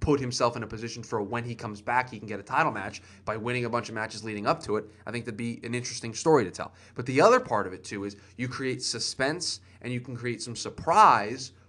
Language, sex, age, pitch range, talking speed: English, male, 20-39, 110-135 Hz, 265 wpm